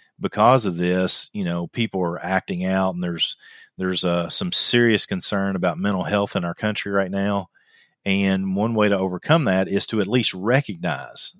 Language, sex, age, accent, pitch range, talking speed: English, male, 40-59, American, 90-115 Hz, 185 wpm